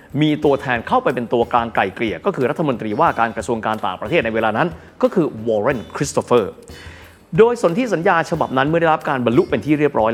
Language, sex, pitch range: Thai, male, 115-170 Hz